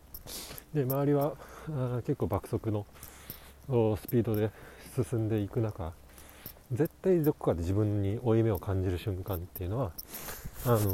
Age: 40-59